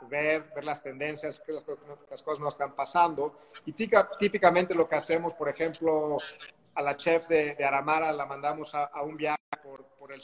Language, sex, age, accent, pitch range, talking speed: English, male, 40-59, Mexican, 145-165 Hz, 190 wpm